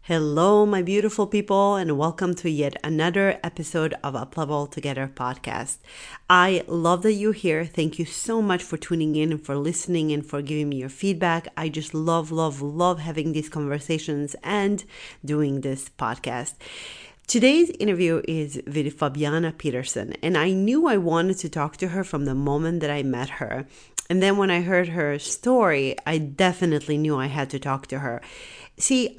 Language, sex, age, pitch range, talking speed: English, female, 30-49, 150-190 Hz, 175 wpm